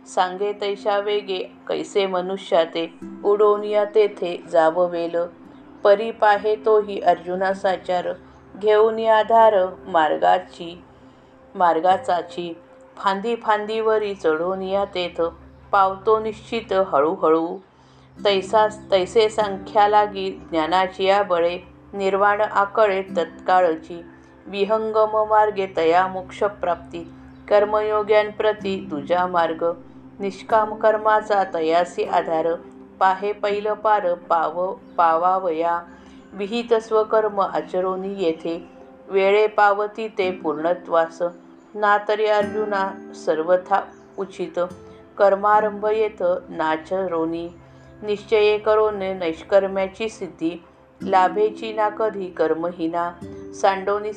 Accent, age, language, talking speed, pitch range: native, 50-69, Marathi, 80 wpm, 170-210 Hz